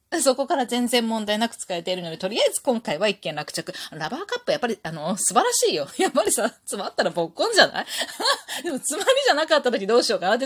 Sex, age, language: female, 20-39, Japanese